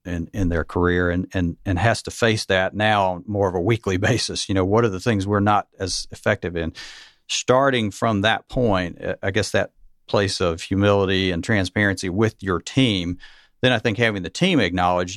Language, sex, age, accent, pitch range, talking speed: English, male, 50-69, American, 85-105 Hz, 200 wpm